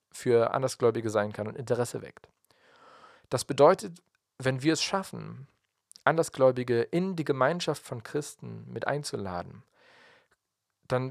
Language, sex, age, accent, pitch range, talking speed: German, male, 40-59, German, 115-150 Hz, 120 wpm